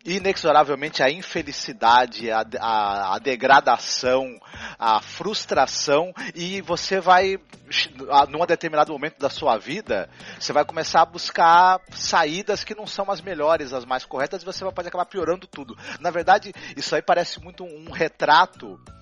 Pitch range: 130-175 Hz